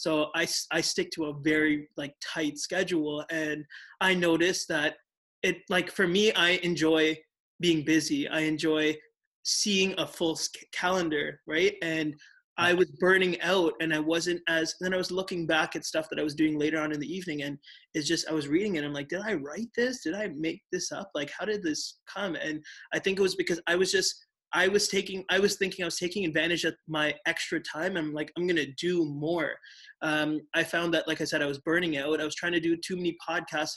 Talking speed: 225 wpm